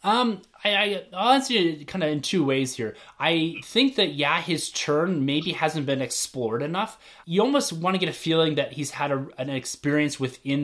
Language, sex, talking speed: English, male, 210 wpm